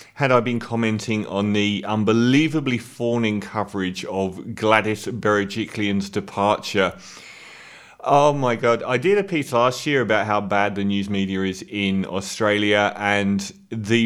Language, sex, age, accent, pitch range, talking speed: English, male, 30-49, British, 110-170 Hz, 140 wpm